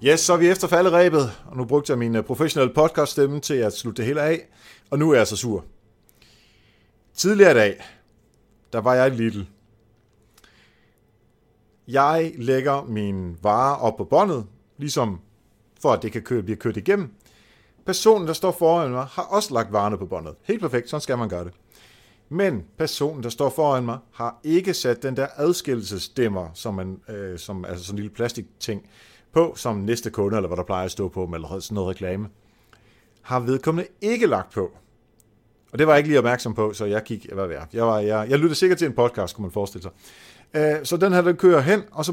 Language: Danish